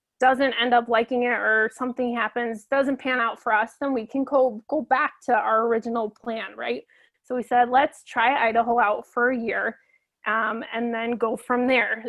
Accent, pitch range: American, 225-255 Hz